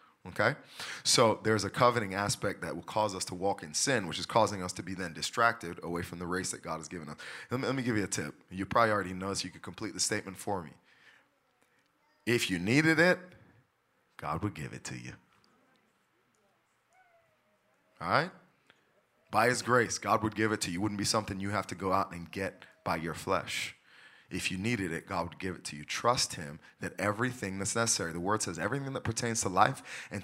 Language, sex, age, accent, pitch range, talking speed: English, male, 30-49, American, 90-110 Hz, 220 wpm